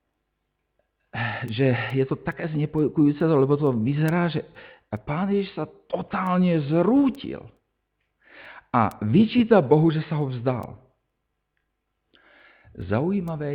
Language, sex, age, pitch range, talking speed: Slovak, male, 50-69, 105-160 Hz, 95 wpm